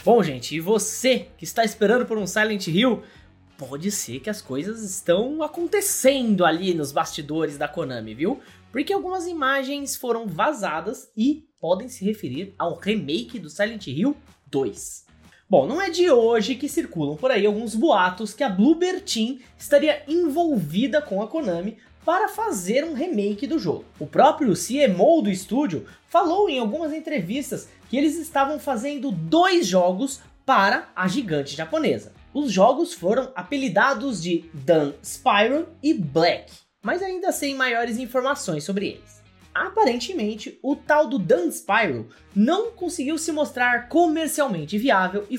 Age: 20-39